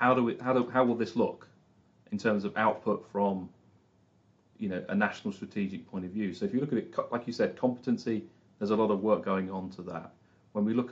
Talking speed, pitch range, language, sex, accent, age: 220 wpm, 100-125 Hz, English, male, British, 40-59